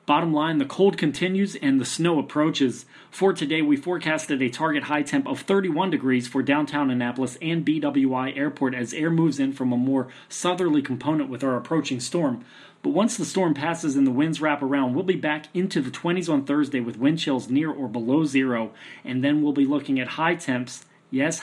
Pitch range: 135-175 Hz